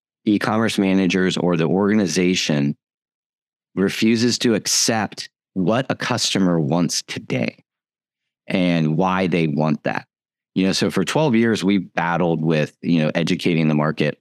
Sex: male